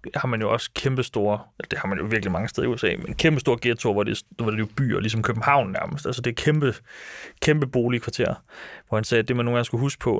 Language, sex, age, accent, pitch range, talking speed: Danish, male, 30-49, native, 110-125 Hz, 255 wpm